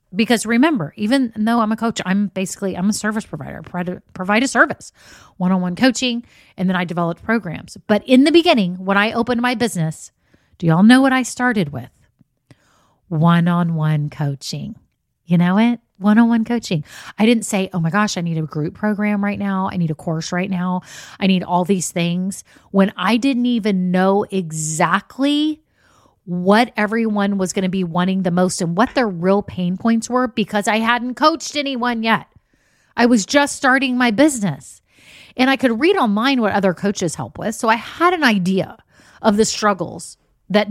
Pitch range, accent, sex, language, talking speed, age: 175-235 Hz, American, female, English, 185 wpm, 30-49